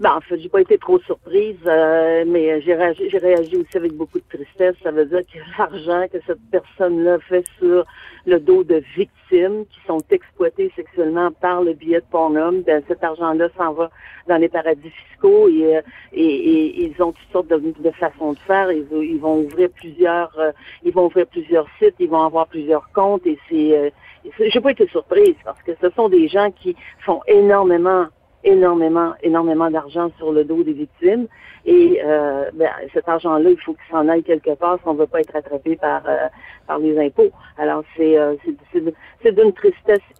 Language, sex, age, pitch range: French, female, 50-69, 165-220 Hz